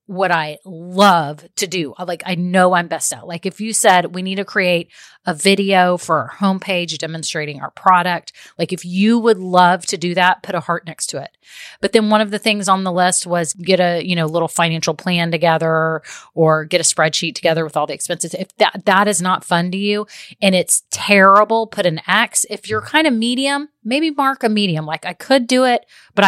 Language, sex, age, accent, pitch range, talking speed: English, female, 30-49, American, 170-215 Hz, 220 wpm